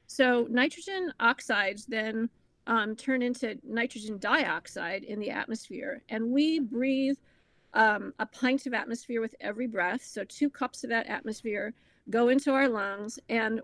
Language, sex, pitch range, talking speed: English, female, 220-260 Hz, 150 wpm